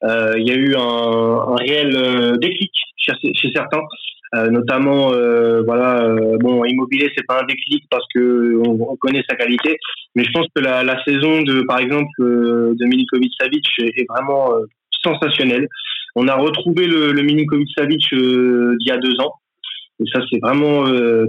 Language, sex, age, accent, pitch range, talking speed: French, male, 20-39, French, 120-150 Hz, 180 wpm